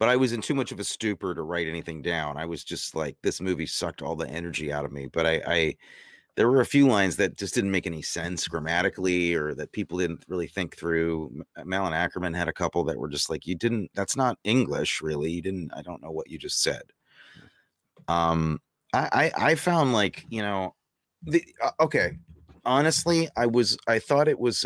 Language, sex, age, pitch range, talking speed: English, male, 30-49, 80-110 Hz, 220 wpm